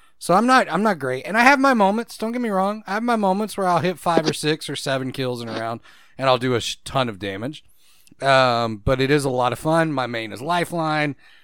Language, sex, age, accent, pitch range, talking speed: English, male, 30-49, American, 120-160 Hz, 270 wpm